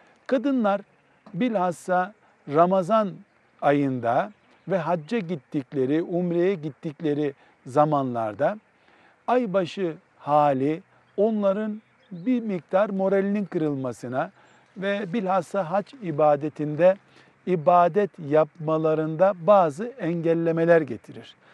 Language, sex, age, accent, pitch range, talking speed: Turkish, male, 50-69, native, 155-195 Hz, 70 wpm